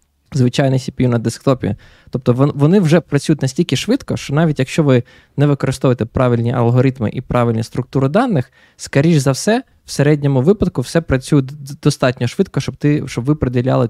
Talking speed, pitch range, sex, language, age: 160 wpm, 120-150 Hz, male, Ukrainian, 20-39